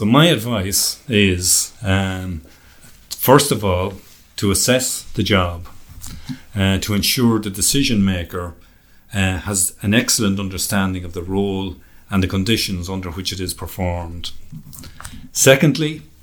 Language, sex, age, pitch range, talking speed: English, male, 40-59, 90-110 Hz, 130 wpm